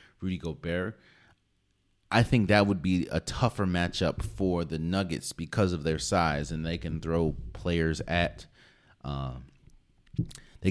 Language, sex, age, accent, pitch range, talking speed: English, male, 30-49, American, 80-100 Hz, 140 wpm